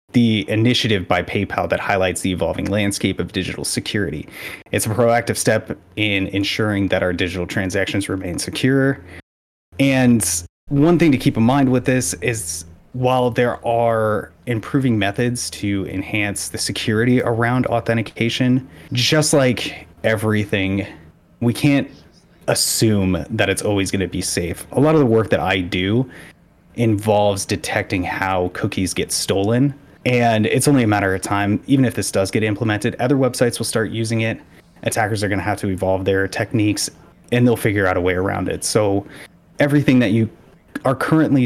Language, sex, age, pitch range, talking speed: English, male, 30-49, 95-125 Hz, 160 wpm